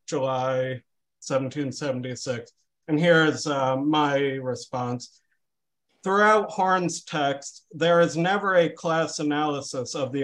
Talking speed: 100 wpm